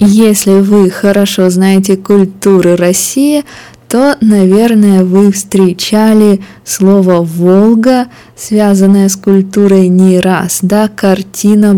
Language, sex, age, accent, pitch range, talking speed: Russian, female, 20-39, native, 170-200 Hz, 95 wpm